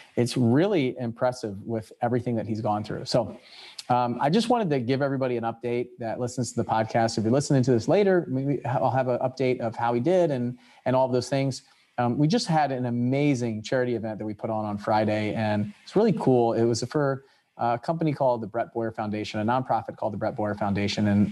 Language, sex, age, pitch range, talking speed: English, male, 30-49, 110-130 Hz, 230 wpm